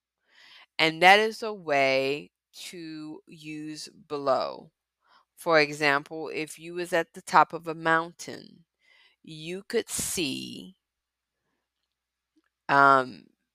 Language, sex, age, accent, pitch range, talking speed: English, female, 20-39, American, 140-190 Hz, 100 wpm